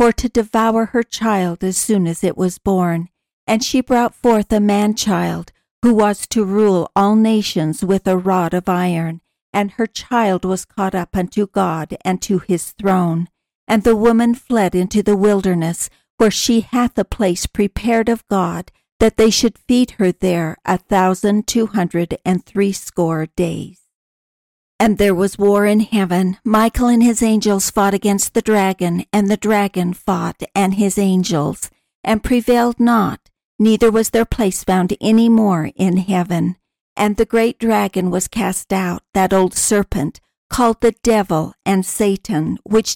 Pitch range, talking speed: 185-225 Hz, 165 wpm